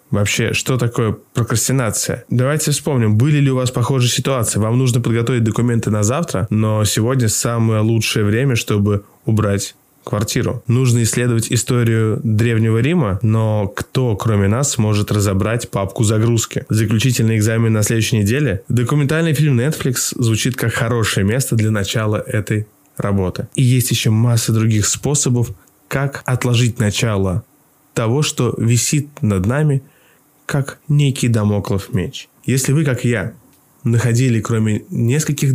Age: 20-39